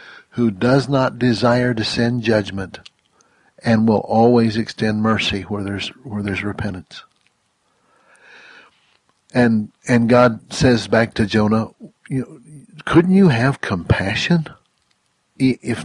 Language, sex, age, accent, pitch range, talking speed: English, male, 60-79, American, 110-145 Hz, 115 wpm